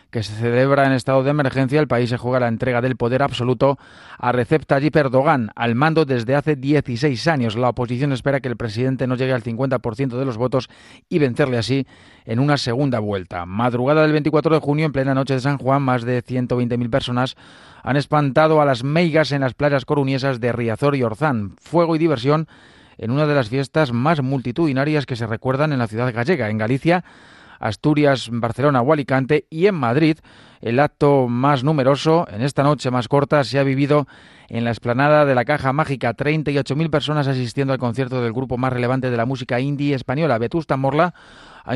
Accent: Spanish